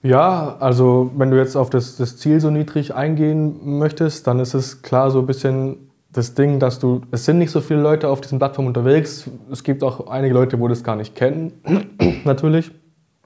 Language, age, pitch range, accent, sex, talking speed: English, 20-39, 120-140 Hz, German, male, 205 wpm